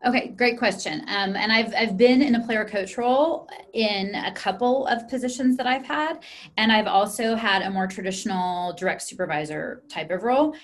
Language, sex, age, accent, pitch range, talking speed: English, female, 30-49, American, 175-225 Hz, 185 wpm